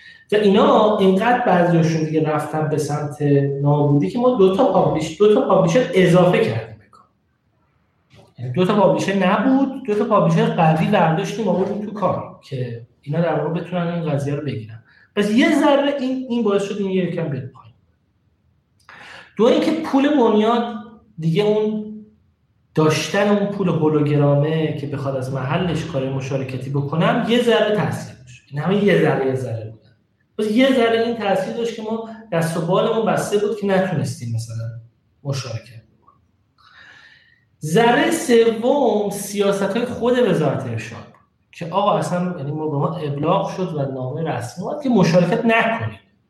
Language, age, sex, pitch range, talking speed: Persian, 30-49, male, 140-210 Hz, 150 wpm